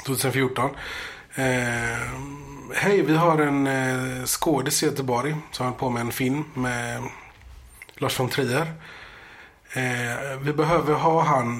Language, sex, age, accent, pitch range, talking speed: Swedish, male, 30-49, native, 120-140 Hz, 130 wpm